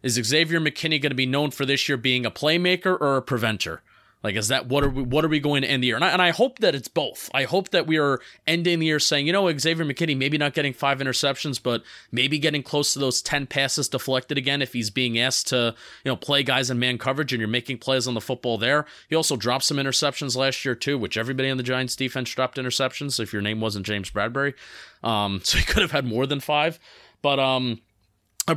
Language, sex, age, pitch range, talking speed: English, male, 30-49, 125-155 Hz, 250 wpm